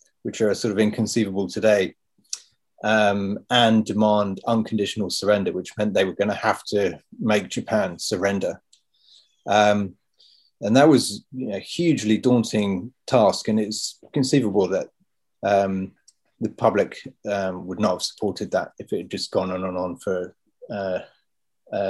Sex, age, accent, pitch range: male, 30-49, British, 100-115 Hz